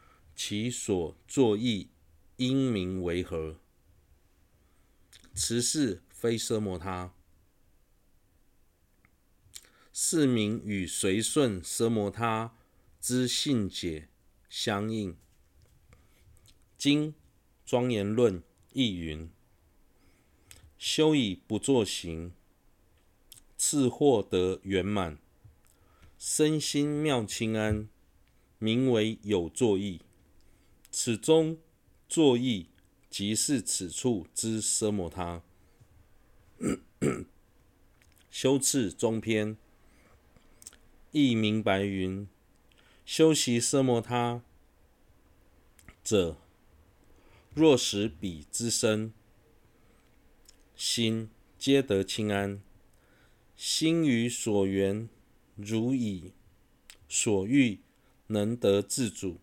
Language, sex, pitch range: Chinese, male, 90-115 Hz